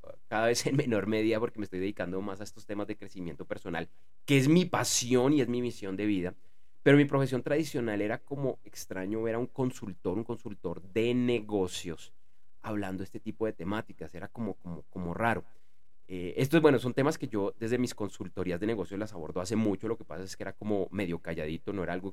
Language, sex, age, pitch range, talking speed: Spanish, male, 30-49, 95-120 Hz, 215 wpm